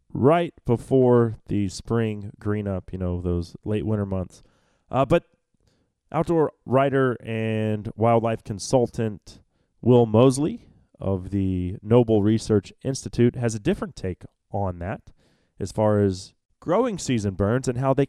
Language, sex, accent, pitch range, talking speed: English, male, American, 105-140 Hz, 135 wpm